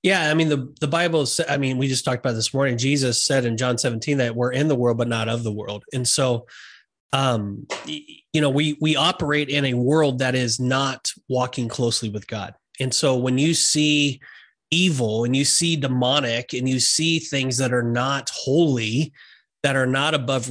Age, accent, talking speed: 30-49, American, 205 wpm